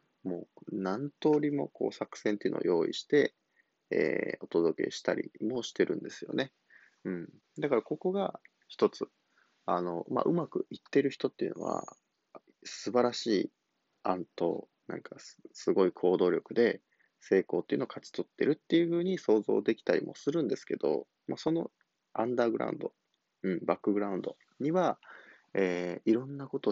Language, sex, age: Japanese, male, 20-39